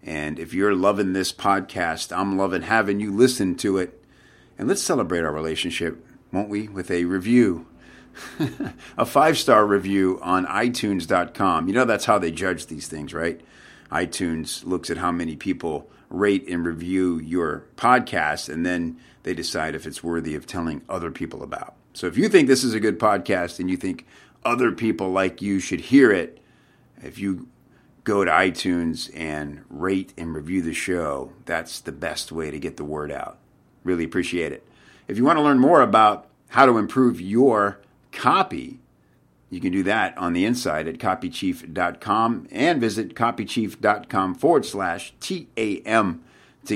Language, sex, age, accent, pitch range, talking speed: English, male, 50-69, American, 85-100 Hz, 165 wpm